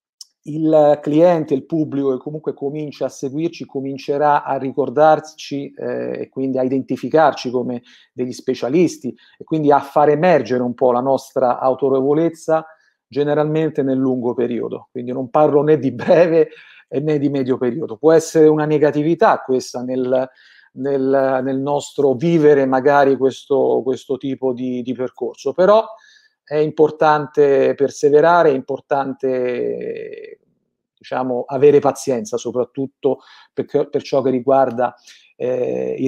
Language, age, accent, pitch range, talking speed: Italian, 40-59, native, 130-155 Hz, 125 wpm